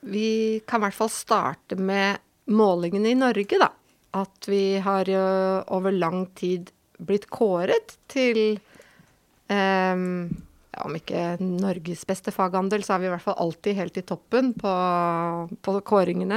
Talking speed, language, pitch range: 140 wpm, English, 180-210 Hz